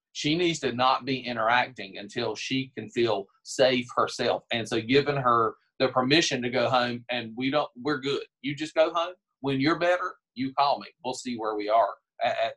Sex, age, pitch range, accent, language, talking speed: male, 40-59, 120-155 Hz, American, English, 205 wpm